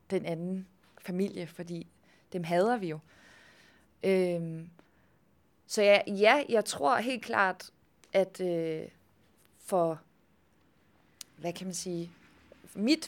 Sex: female